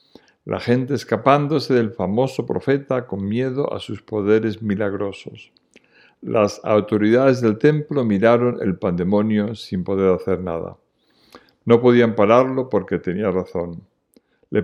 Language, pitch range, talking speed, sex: Spanish, 95-125 Hz, 125 wpm, male